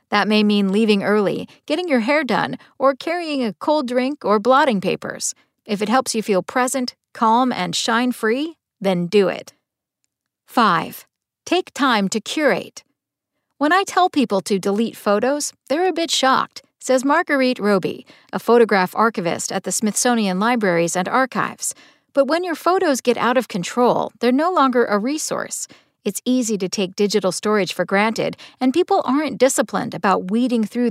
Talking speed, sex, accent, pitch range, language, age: 165 wpm, female, American, 200-270 Hz, English, 50-69